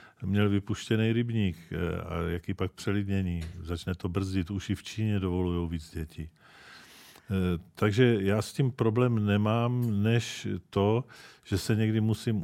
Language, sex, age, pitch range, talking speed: Czech, male, 50-69, 90-105 Hz, 140 wpm